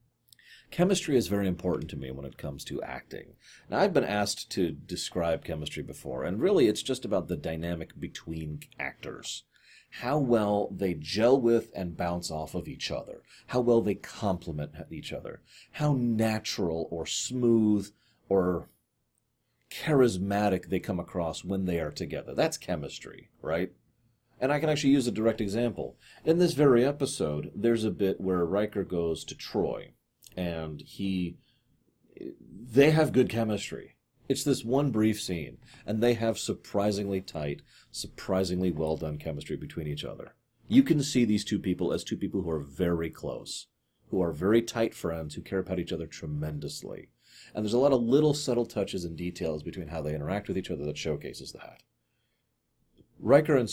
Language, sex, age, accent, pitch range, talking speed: English, male, 40-59, American, 85-120 Hz, 170 wpm